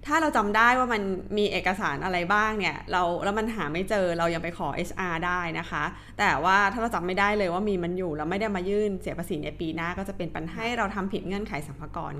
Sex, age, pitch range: female, 20-39, 170-215 Hz